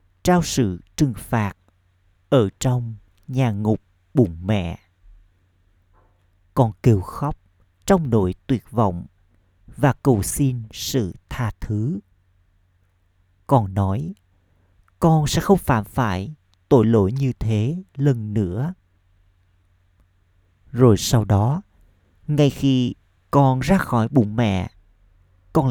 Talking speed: 110 wpm